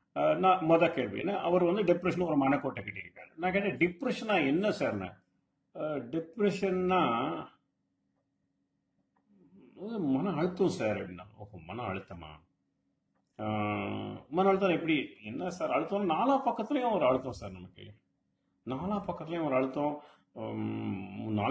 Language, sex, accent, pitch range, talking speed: English, male, Indian, 125-190 Hz, 45 wpm